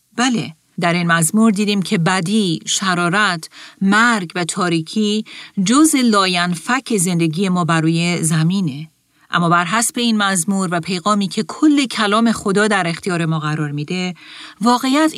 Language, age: Persian, 40-59